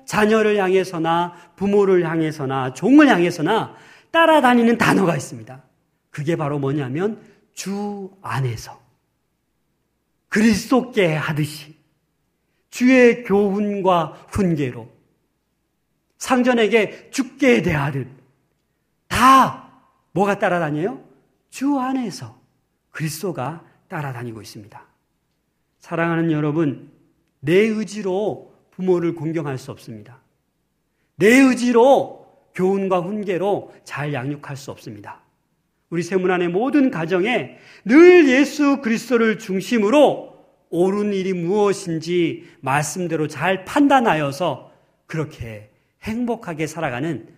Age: 40-59